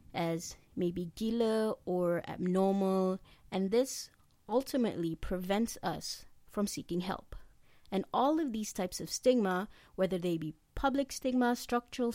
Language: Malay